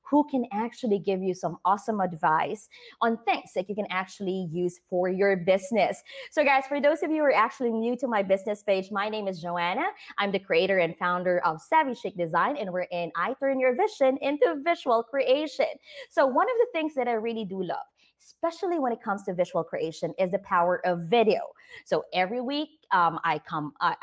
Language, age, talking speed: English, 20-39, 210 wpm